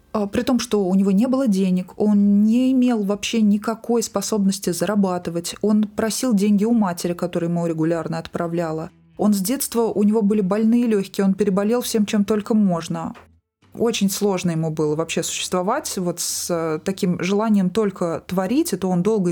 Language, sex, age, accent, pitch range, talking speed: Russian, female, 20-39, native, 180-225 Hz, 165 wpm